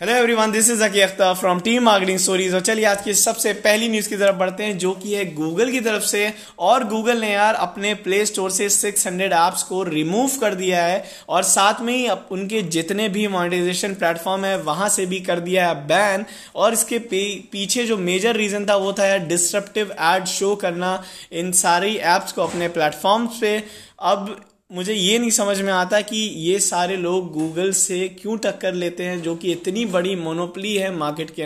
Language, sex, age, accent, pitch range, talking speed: Hindi, male, 20-39, native, 185-210 Hz, 200 wpm